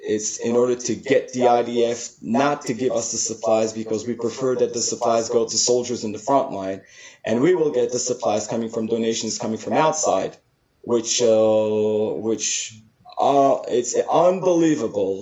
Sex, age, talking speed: male, 20-39, 175 wpm